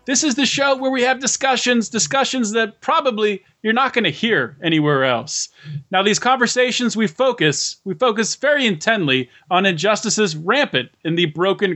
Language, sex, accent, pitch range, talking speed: English, male, American, 165-220 Hz, 170 wpm